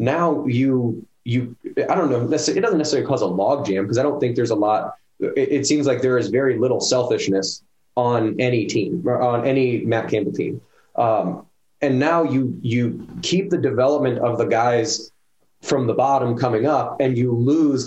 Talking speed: 190 wpm